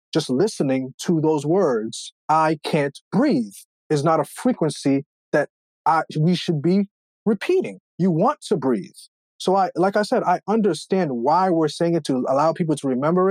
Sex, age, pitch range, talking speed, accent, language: male, 30-49, 140-185 Hz, 170 wpm, American, English